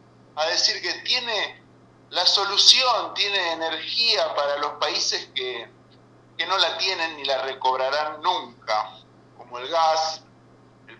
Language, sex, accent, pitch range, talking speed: Spanish, male, Argentinian, 140-185 Hz, 130 wpm